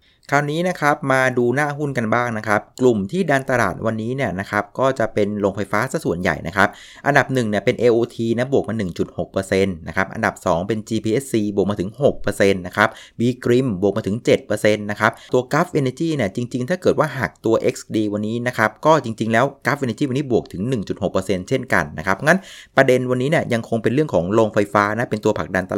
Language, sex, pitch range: Thai, male, 105-130 Hz